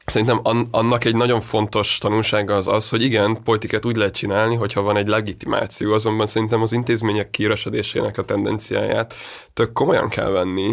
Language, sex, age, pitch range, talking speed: Hungarian, male, 20-39, 100-115 Hz, 160 wpm